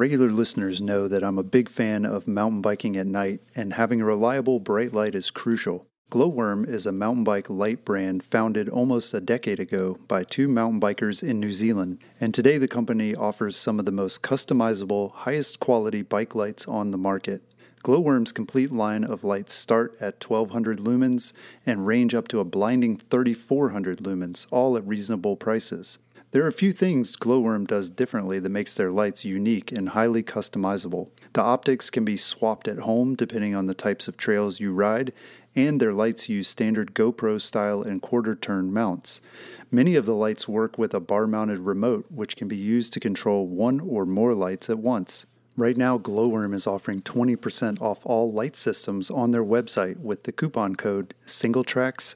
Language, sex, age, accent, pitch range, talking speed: English, male, 30-49, American, 100-120 Hz, 185 wpm